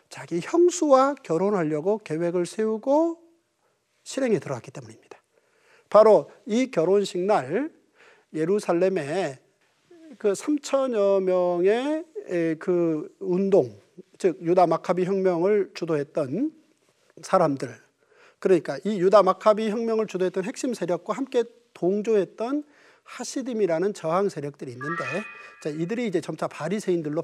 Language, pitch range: Korean, 175-240 Hz